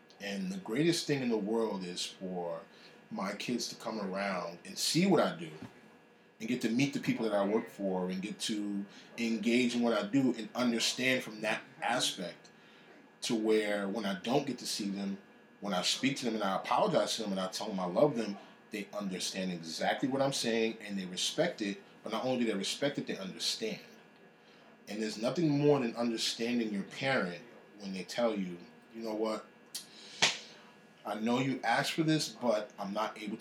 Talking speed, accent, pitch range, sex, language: 200 wpm, American, 95-120 Hz, male, English